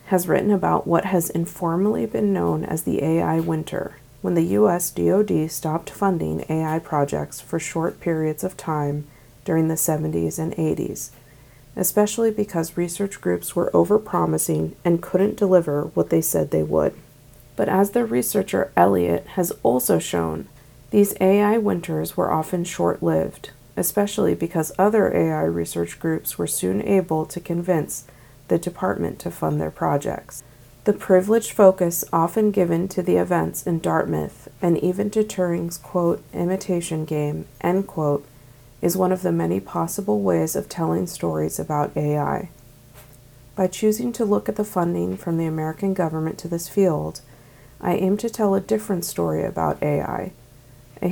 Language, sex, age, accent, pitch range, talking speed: English, female, 40-59, American, 125-185 Hz, 155 wpm